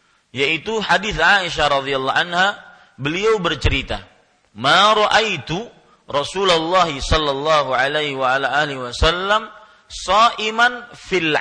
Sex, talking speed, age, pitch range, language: male, 75 wpm, 40-59, 145-190 Hz, Malay